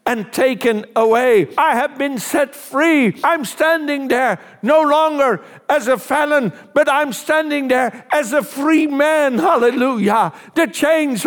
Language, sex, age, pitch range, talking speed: English, male, 60-79, 205-285 Hz, 145 wpm